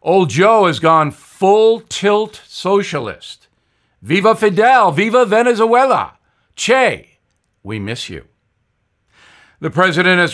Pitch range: 140-190 Hz